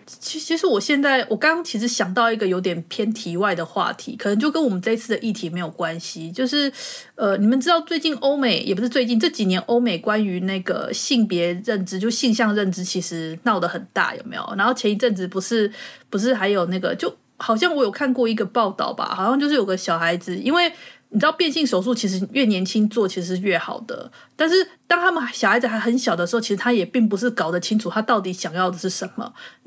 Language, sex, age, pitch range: Chinese, female, 30-49, 190-255 Hz